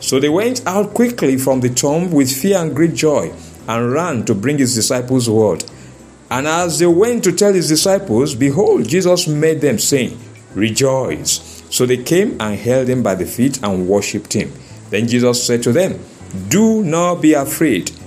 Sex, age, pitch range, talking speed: male, 50-69, 110-160 Hz, 185 wpm